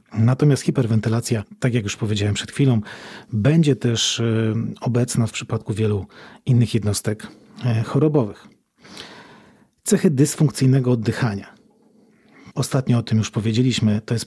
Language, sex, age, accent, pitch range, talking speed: Polish, male, 40-59, native, 115-140 Hz, 115 wpm